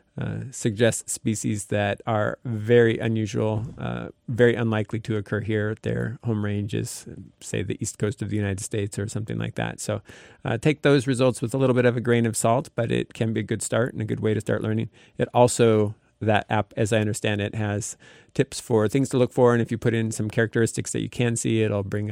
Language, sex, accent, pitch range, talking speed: English, male, American, 110-125 Hz, 230 wpm